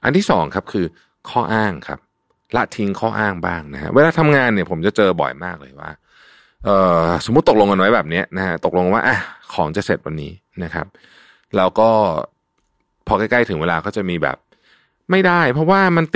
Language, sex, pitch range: Thai, male, 85-140 Hz